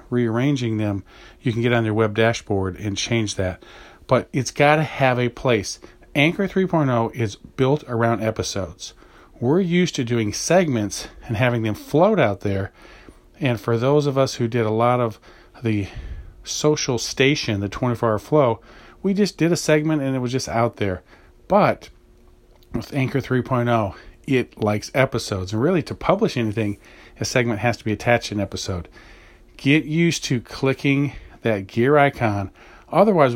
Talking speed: 165 wpm